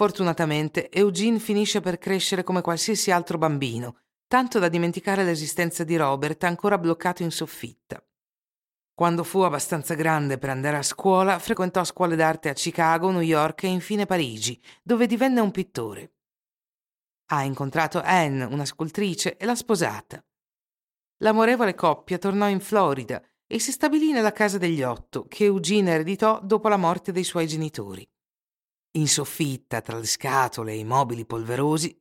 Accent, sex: native, female